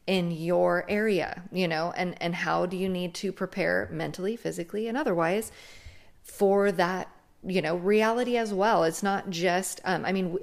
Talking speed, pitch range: 175 wpm, 175-200 Hz